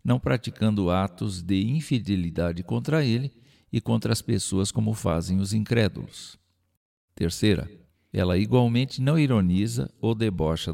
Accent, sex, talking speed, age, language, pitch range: Brazilian, male, 125 wpm, 60-79, Portuguese, 95-125 Hz